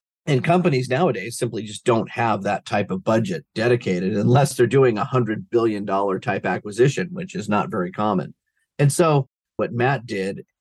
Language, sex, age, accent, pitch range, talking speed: English, male, 40-59, American, 110-135 Hz, 170 wpm